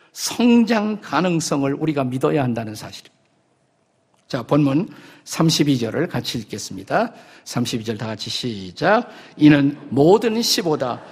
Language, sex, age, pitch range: Korean, male, 50-69, 140-185 Hz